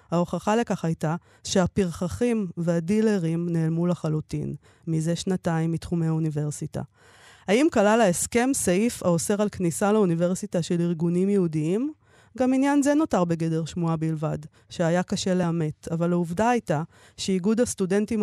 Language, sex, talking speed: Hebrew, female, 120 wpm